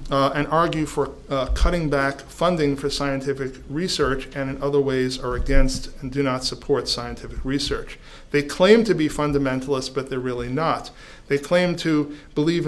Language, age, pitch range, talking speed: English, 40-59, 130-150 Hz, 170 wpm